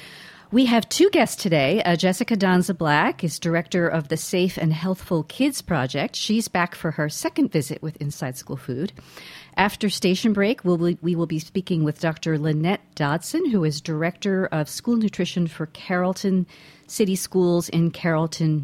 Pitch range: 155-205 Hz